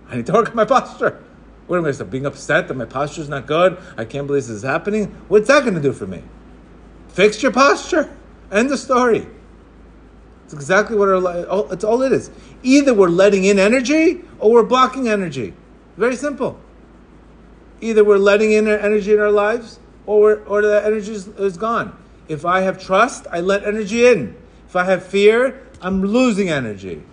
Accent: American